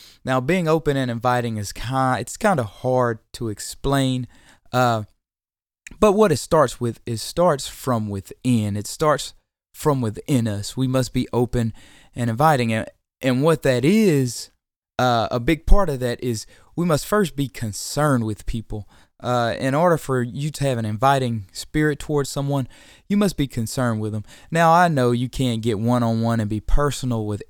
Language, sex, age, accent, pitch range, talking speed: English, male, 20-39, American, 115-140 Hz, 185 wpm